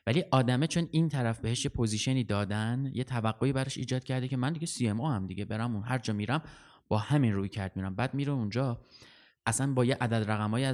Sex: male